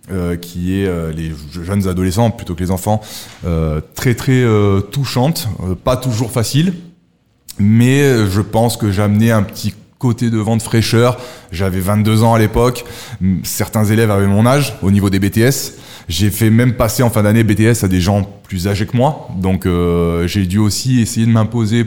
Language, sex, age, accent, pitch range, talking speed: French, male, 20-39, French, 95-115 Hz, 190 wpm